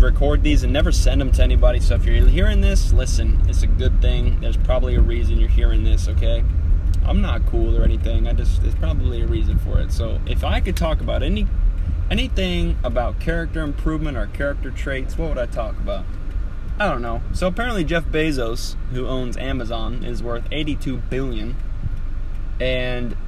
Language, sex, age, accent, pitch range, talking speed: English, male, 20-39, American, 80-95 Hz, 190 wpm